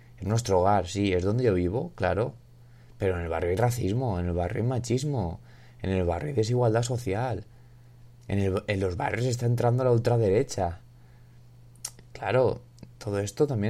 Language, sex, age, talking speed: Spanish, male, 20-39, 165 wpm